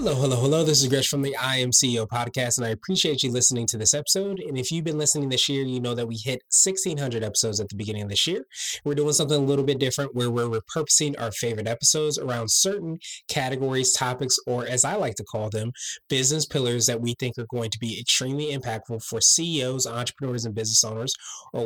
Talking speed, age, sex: 220 wpm, 20-39, male